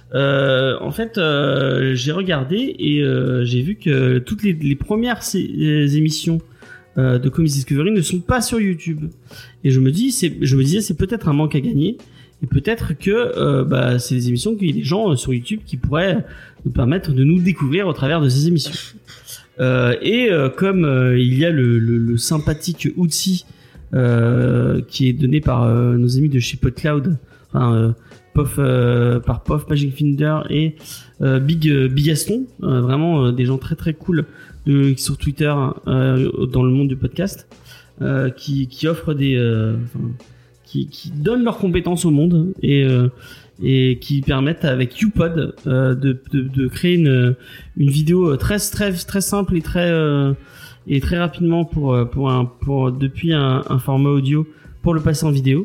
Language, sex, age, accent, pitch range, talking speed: French, male, 30-49, French, 130-165 Hz, 190 wpm